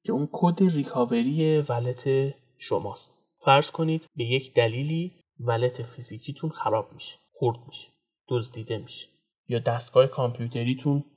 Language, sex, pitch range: Persian, male, 120-150 Hz